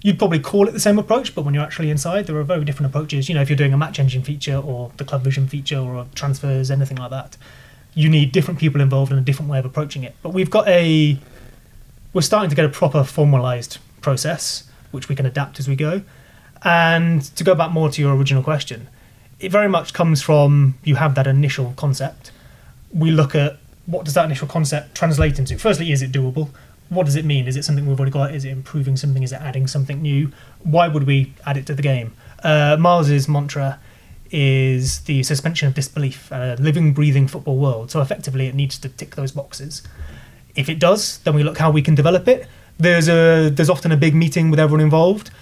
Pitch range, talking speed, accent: 135-160 Hz, 225 wpm, British